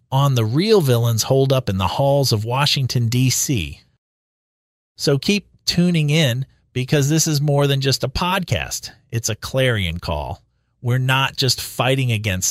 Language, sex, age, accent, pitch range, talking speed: English, male, 40-59, American, 105-150 Hz, 160 wpm